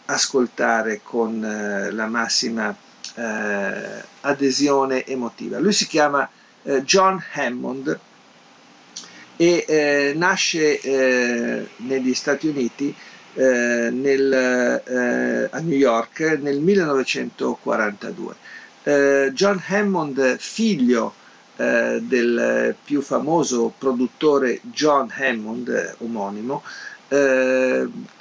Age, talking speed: 50-69, 90 wpm